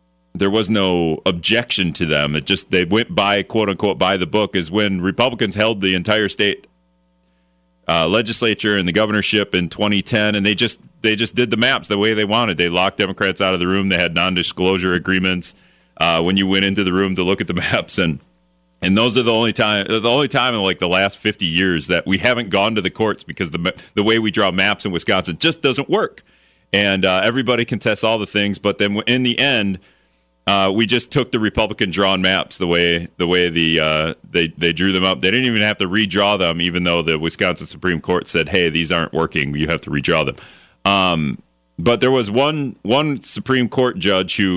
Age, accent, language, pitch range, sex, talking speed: 40-59, American, English, 90-110 Hz, male, 220 wpm